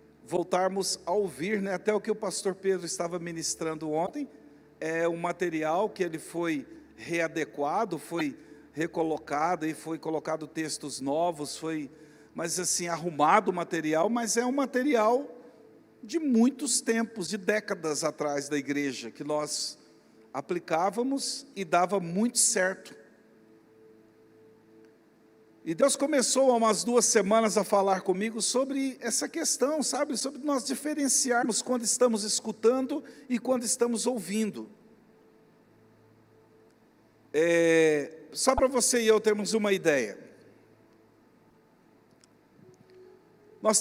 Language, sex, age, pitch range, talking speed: Portuguese, male, 50-69, 155-235 Hz, 115 wpm